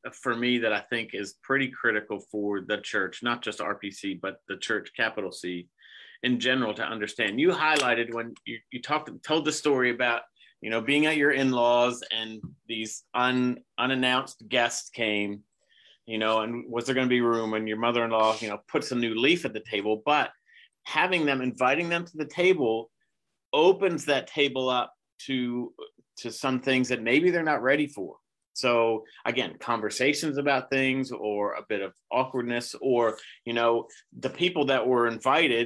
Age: 40-59